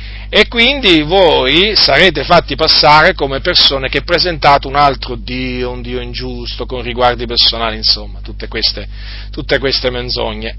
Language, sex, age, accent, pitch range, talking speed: Italian, male, 40-59, native, 115-145 Hz, 135 wpm